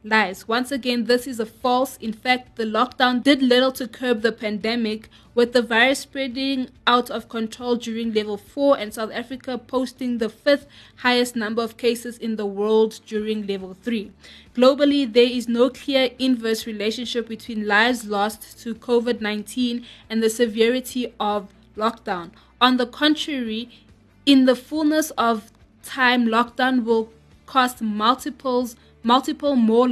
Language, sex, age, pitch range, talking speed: English, female, 20-39, 220-255 Hz, 150 wpm